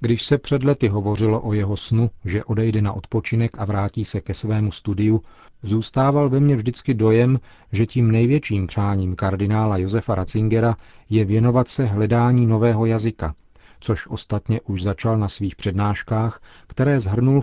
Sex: male